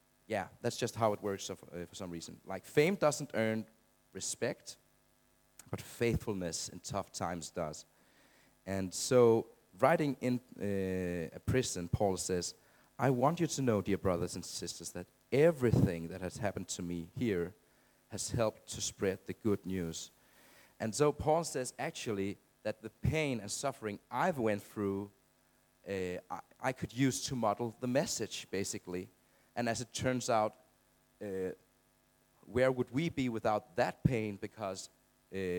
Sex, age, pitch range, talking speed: male, 40-59, 95-125 Hz, 150 wpm